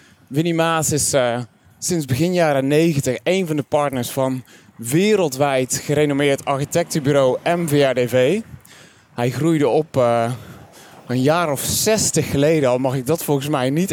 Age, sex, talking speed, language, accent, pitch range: 20-39, male, 140 wpm, Dutch, Dutch, 135-160 Hz